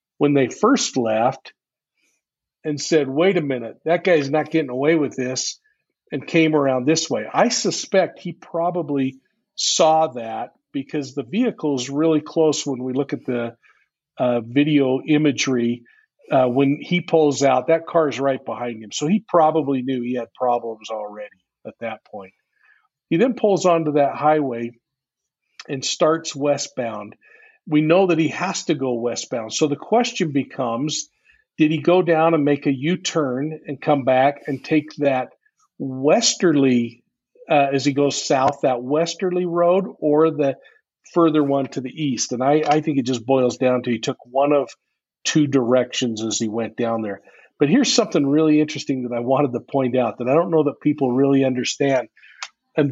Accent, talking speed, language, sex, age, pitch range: American, 175 wpm, English, male, 50-69, 130-160 Hz